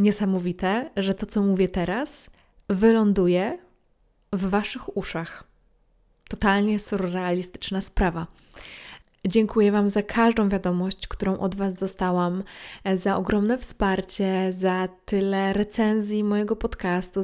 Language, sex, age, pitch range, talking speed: Polish, female, 20-39, 190-220 Hz, 105 wpm